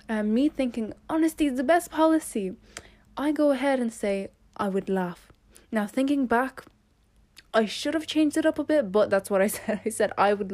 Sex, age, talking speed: female, 10-29, 205 wpm